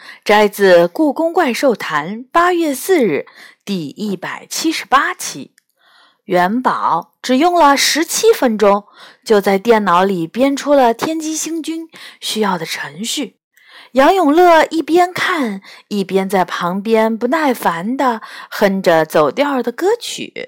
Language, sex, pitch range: Chinese, female, 195-320 Hz